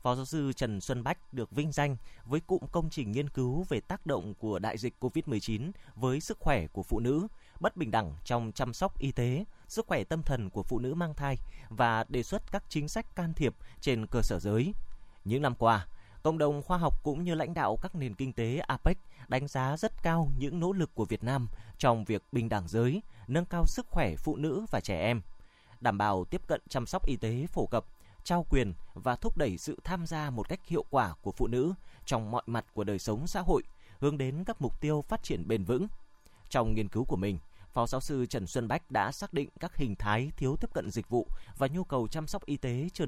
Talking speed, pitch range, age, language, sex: 235 wpm, 115-155 Hz, 20-39, Vietnamese, male